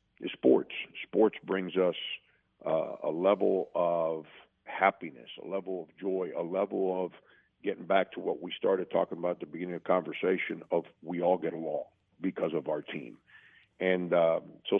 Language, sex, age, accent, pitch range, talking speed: English, male, 50-69, American, 90-105 Hz, 170 wpm